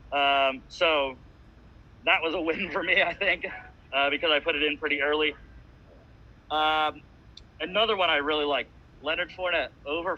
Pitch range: 145-175 Hz